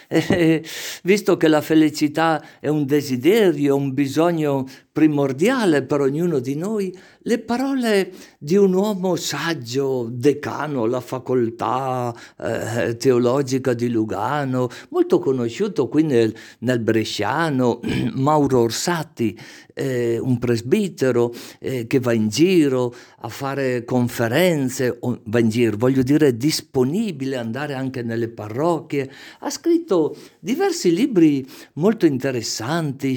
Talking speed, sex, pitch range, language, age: 120 wpm, male, 125-165 Hz, Italian, 50-69